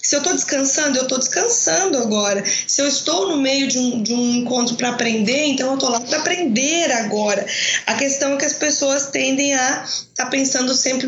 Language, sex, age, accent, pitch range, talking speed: Portuguese, female, 20-39, Brazilian, 240-300 Hz, 200 wpm